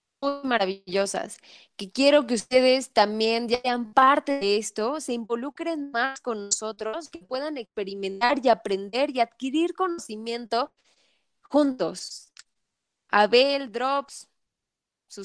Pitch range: 215-275 Hz